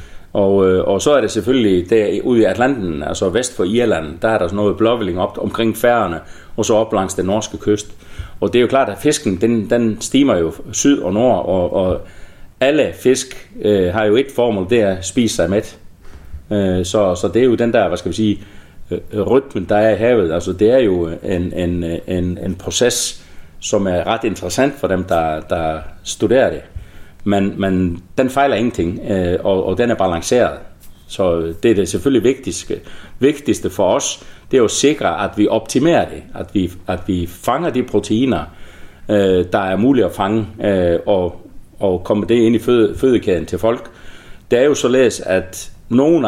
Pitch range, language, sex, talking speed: 85-110 Hz, Danish, male, 195 wpm